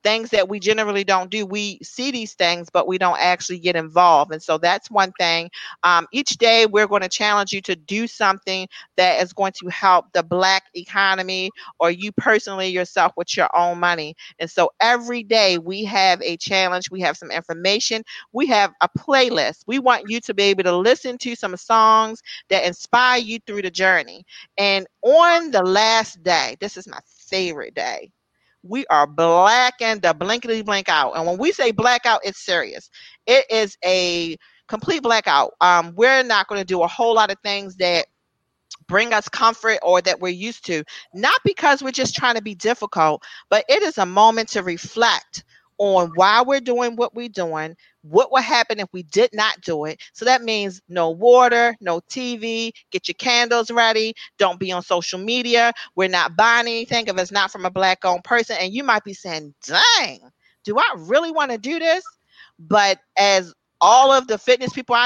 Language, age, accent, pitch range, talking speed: English, 40-59, American, 180-235 Hz, 190 wpm